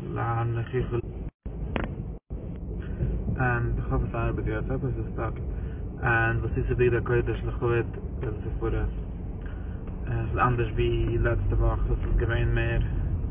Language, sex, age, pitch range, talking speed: English, male, 20-39, 100-120 Hz, 50 wpm